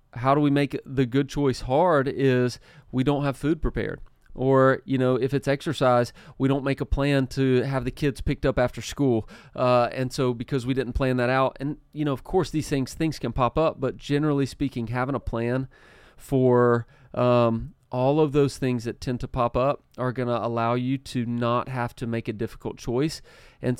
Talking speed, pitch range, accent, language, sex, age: 210 wpm, 120-140 Hz, American, English, male, 30-49